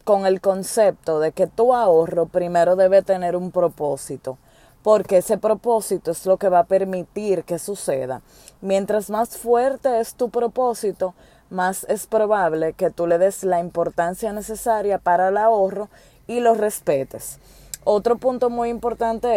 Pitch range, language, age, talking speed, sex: 170-220 Hz, Spanish, 20-39, 150 wpm, female